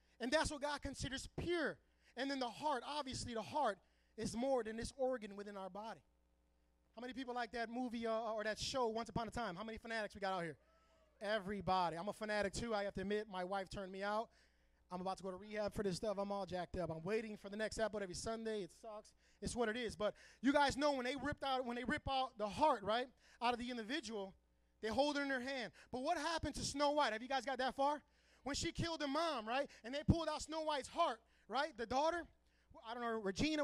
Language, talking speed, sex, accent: English, 250 wpm, male, American